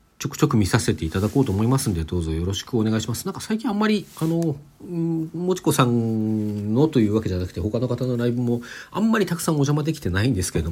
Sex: male